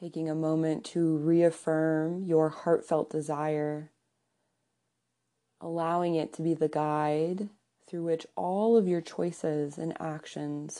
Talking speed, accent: 120 wpm, American